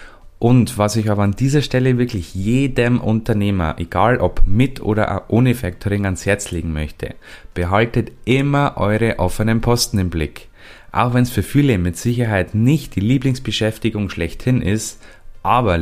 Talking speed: 150 wpm